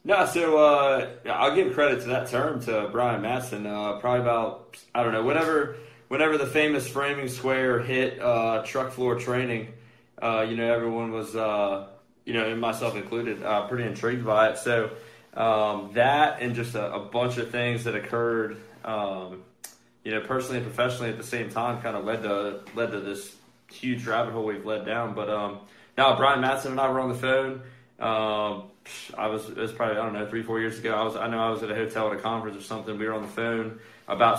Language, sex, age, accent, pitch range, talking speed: English, male, 20-39, American, 105-120 Hz, 215 wpm